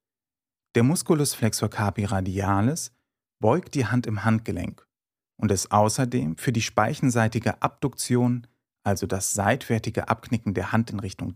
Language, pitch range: German, 100-125 Hz